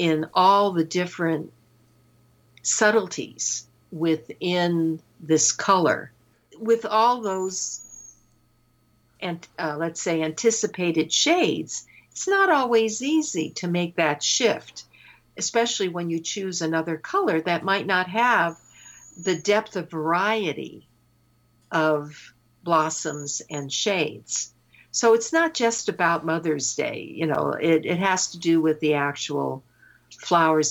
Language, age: English, 60-79